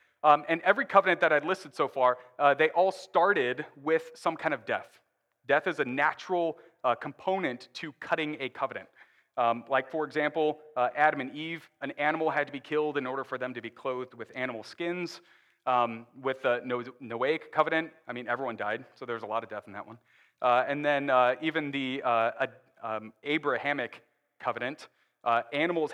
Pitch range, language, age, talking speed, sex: 120-155 Hz, English, 30-49, 195 wpm, male